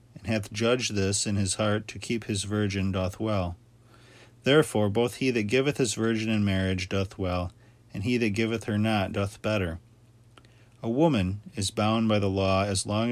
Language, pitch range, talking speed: English, 100-120 Hz, 190 wpm